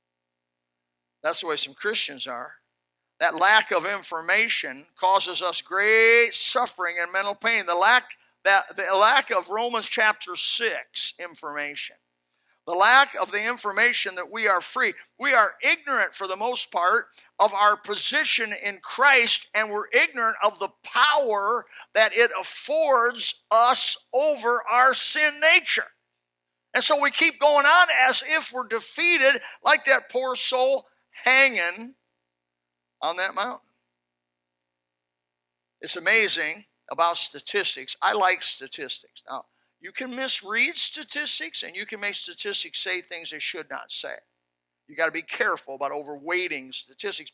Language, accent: English, American